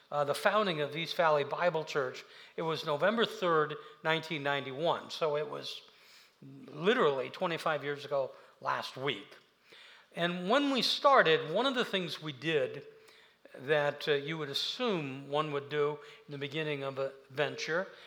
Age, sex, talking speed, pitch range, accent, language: 60-79, male, 155 wpm, 150-220 Hz, American, English